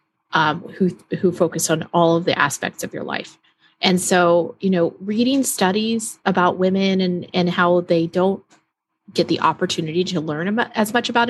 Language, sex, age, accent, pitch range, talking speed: English, female, 30-49, American, 170-205 Hz, 180 wpm